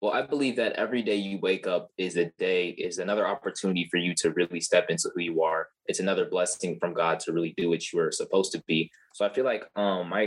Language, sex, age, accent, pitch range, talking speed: English, male, 20-39, American, 90-115 Hz, 255 wpm